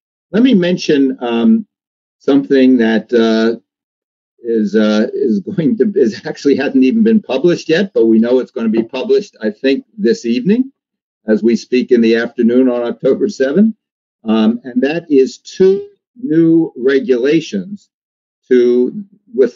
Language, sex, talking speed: English, male, 150 wpm